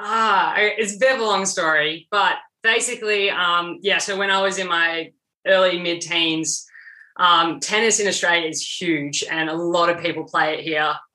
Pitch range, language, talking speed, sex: 155-180 Hz, English, 185 wpm, female